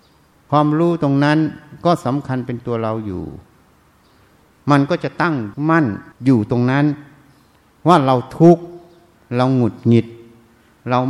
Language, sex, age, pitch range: Thai, male, 60-79, 115-155 Hz